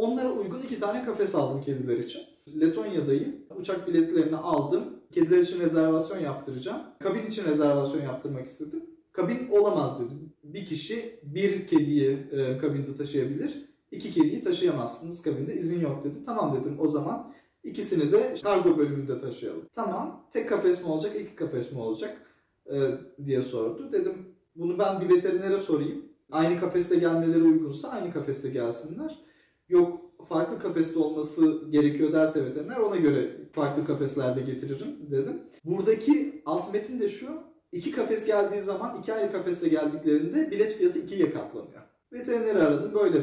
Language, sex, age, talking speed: Turkish, male, 30-49, 145 wpm